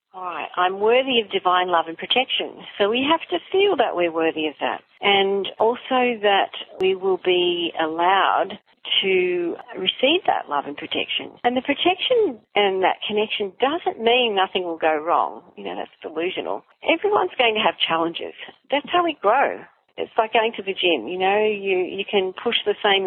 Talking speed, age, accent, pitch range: 185 wpm, 50-69, Australian, 180-265 Hz